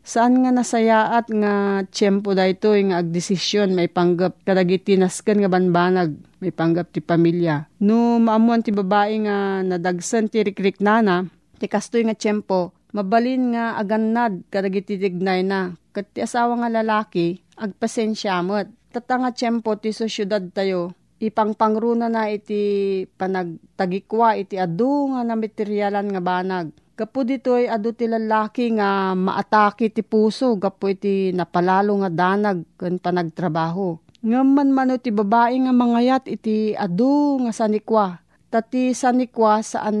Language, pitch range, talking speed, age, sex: Filipino, 185-225 Hz, 130 wpm, 40-59, female